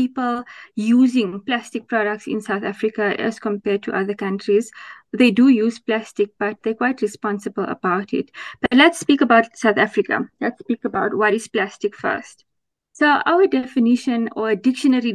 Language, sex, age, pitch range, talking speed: English, female, 20-39, 210-245 Hz, 160 wpm